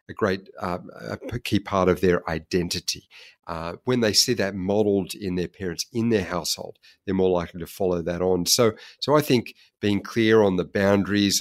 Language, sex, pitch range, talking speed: English, male, 90-115 Hz, 195 wpm